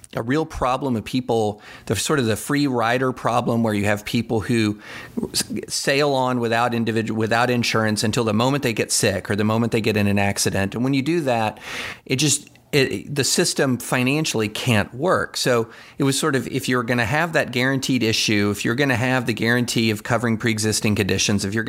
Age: 40-59